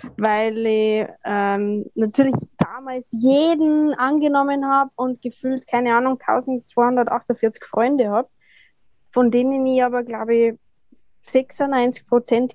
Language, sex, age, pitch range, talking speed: German, female, 20-39, 225-270 Hz, 110 wpm